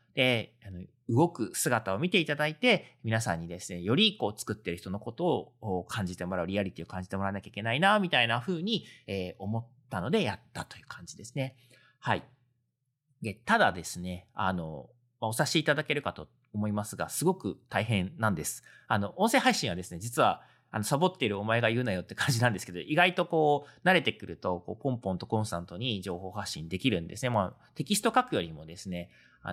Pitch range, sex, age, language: 95-135 Hz, male, 40-59, Japanese